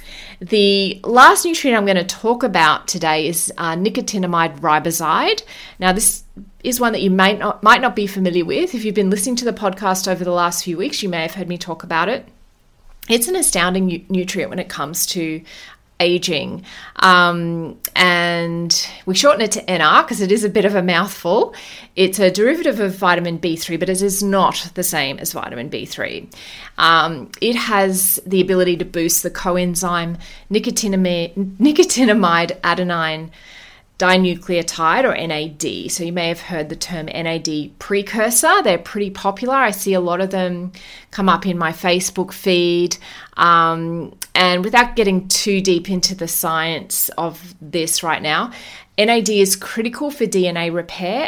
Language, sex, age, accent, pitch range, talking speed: English, female, 30-49, Australian, 170-200 Hz, 165 wpm